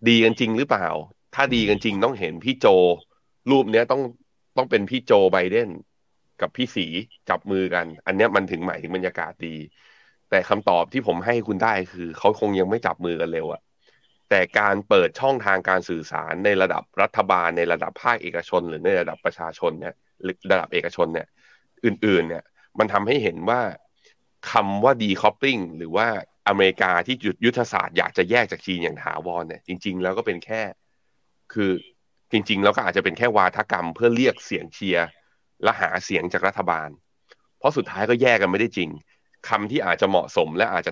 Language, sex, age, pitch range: Thai, male, 30-49, 85-115 Hz